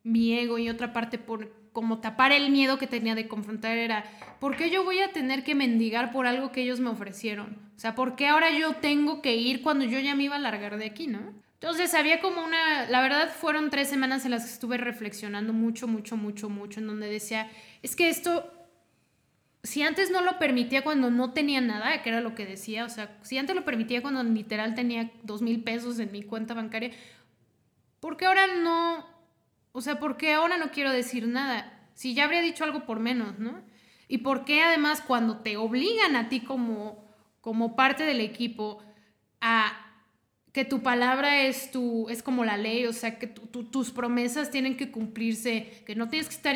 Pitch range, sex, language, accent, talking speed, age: 225-280 Hz, female, Spanish, Mexican, 205 wpm, 20-39